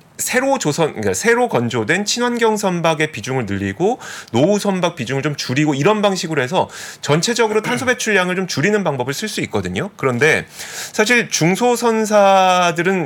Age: 30-49